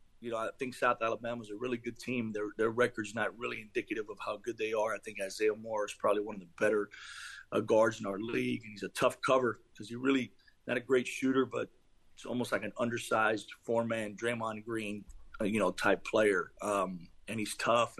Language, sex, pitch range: English, male, 105-130 Hz